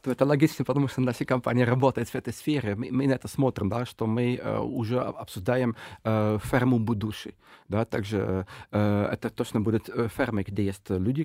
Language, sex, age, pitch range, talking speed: Russian, male, 40-59, 105-125 Hz, 175 wpm